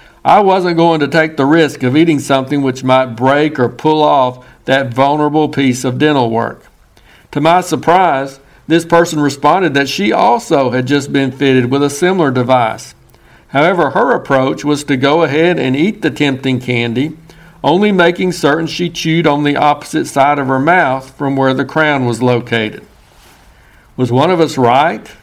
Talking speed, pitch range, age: 175 wpm, 130-155 Hz, 60-79